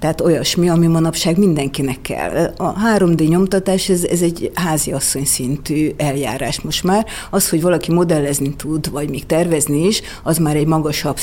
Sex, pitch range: female, 145-170 Hz